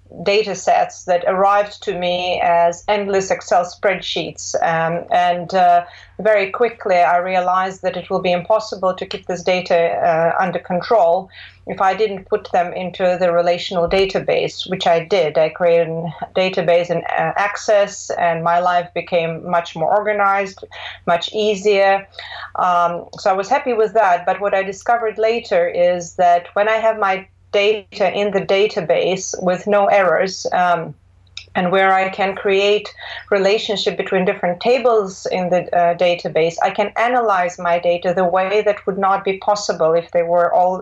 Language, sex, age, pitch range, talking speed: English, female, 30-49, 170-200 Hz, 160 wpm